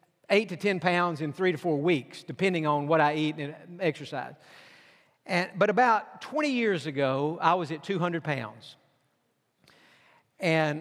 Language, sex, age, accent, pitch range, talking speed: English, male, 50-69, American, 155-190 Hz, 155 wpm